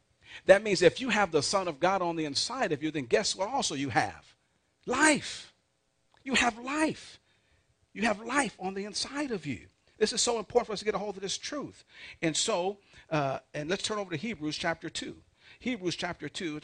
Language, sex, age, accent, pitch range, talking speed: English, male, 50-69, American, 130-180 Hz, 215 wpm